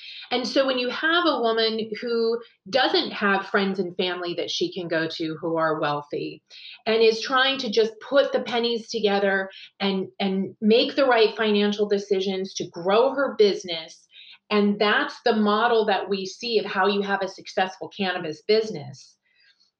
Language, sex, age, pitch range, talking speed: English, female, 30-49, 190-245 Hz, 170 wpm